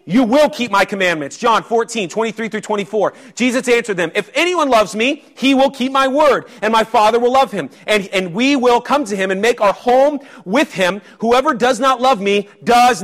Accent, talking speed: American, 215 wpm